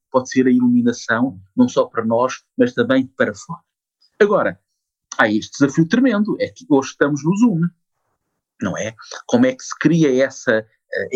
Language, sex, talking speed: Portuguese, male, 170 wpm